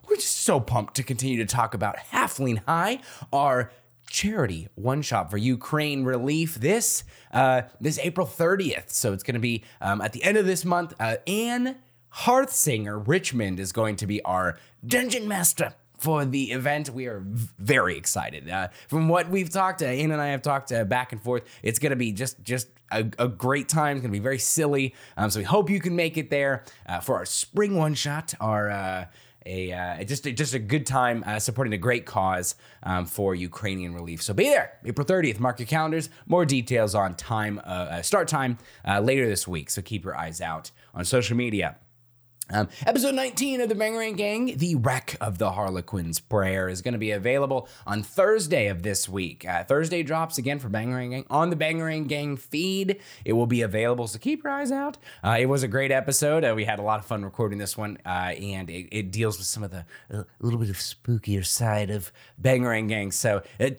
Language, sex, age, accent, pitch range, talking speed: English, male, 20-39, American, 105-155 Hz, 205 wpm